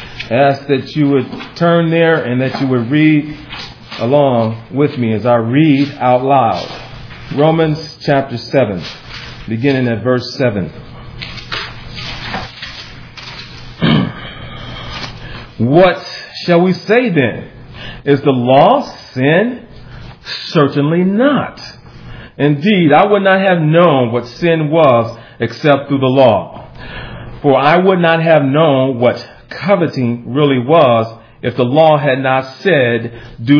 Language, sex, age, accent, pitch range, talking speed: English, male, 40-59, American, 125-170 Hz, 120 wpm